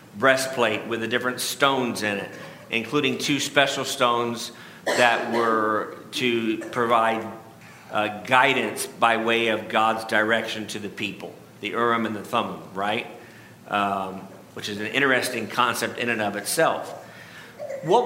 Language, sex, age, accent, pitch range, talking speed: English, male, 50-69, American, 115-145 Hz, 140 wpm